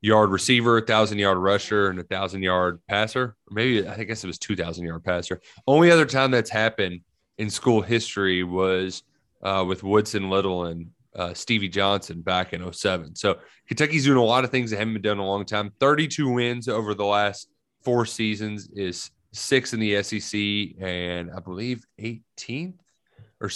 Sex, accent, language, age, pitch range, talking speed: male, American, English, 30-49, 95-115 Hz, 185 wpm